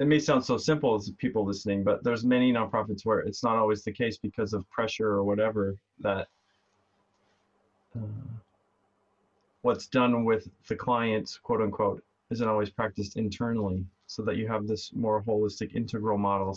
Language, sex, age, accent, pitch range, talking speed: English, male, 30-49, American, 100-115 Hz, 165 wpm